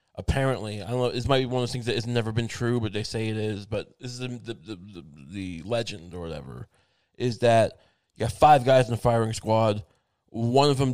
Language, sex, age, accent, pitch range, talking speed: English, male, 20-39, American, 110-130 Hz, 240 wpm